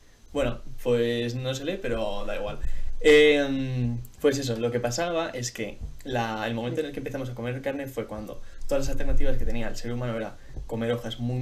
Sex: male